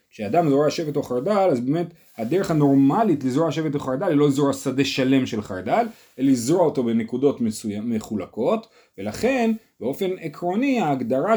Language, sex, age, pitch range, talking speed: Hebrew, male, 30-49, 125-175 Hz, 155 wpm